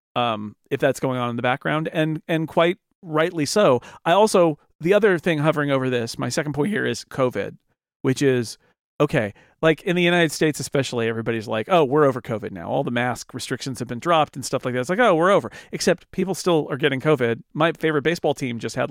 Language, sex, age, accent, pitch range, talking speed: English, male, 40-59, American, 125-165 Hz, 225 wpm